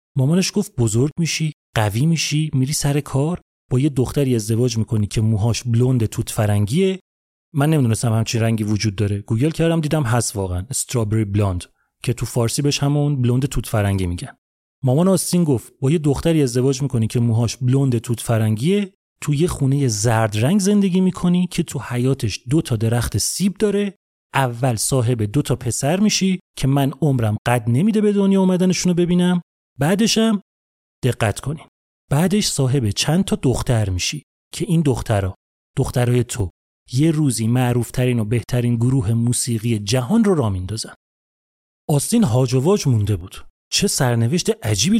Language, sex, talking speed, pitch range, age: Persian, male, 155 wpm, 115-160 Hz, 30-49